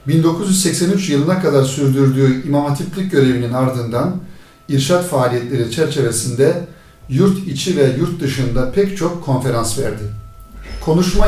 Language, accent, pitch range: Turkish, native, 125-165 Hz